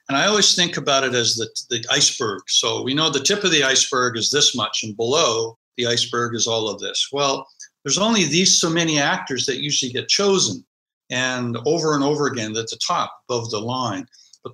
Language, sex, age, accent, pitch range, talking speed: English, male, 60-79, American, 120-170 Hz, 215 wpm